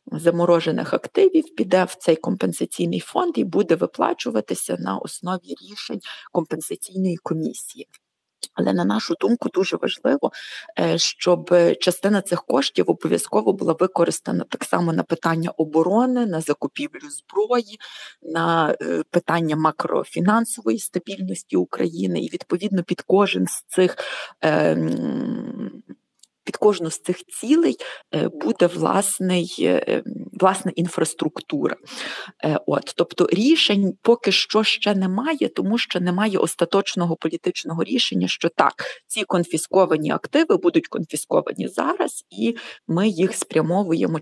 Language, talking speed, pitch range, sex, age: Ukrainian, 110 wpm, 165-210 Hz, female, 30-49